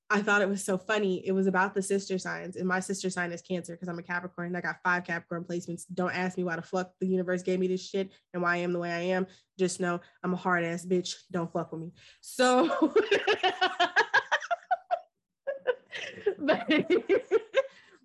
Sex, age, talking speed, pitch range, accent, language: female, 20-39, 205 wpm, 185-270 Hz, American, English